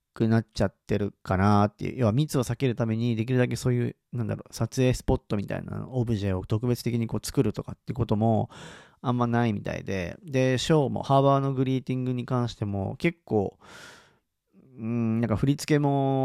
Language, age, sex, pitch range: Japanese, 40-59, male, 110-140 Hz